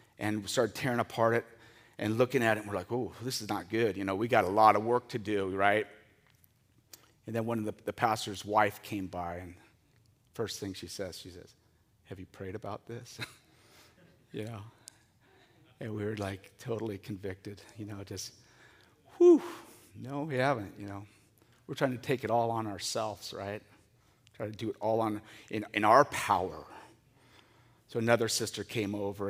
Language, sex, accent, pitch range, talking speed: English, male, American, 100-120 Hz, 190 wpm